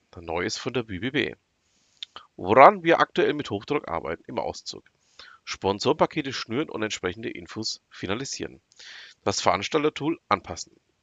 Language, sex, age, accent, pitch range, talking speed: German, male, 40-59, German, 100-150 Hz, 115 wpm